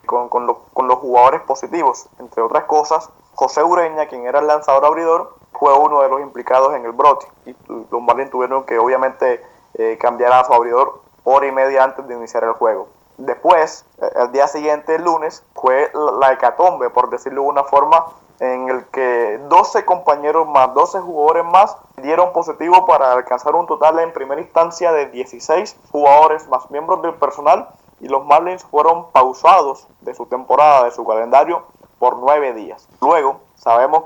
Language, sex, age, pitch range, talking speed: English, male, 20-39, 130-165 Hz, 175 wpm